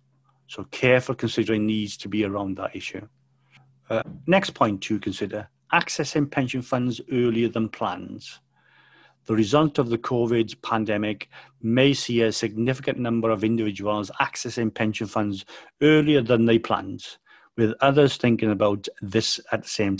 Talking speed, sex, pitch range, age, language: 145 wpm, male, 110-130 Hz, 40-59, English